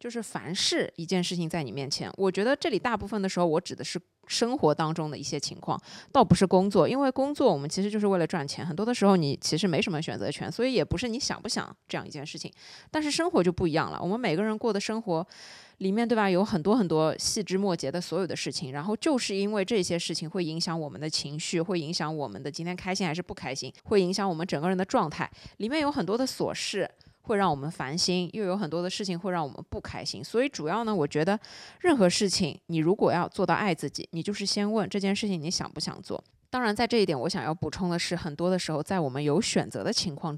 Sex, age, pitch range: female, 20-39, 165-215 Hz